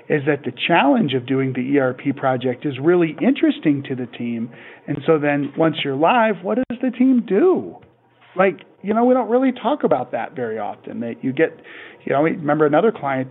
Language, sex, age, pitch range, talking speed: English, male, 40-59, 140-185 Hz, 205 wpm